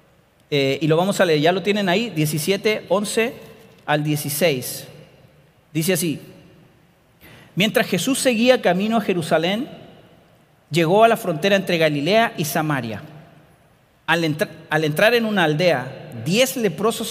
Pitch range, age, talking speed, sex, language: 150-200 Hz, 40-59, 135 wpm, male, Spanish